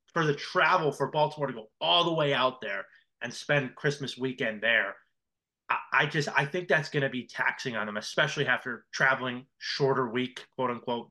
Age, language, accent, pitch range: 20-39, English, American, 130-175 Hz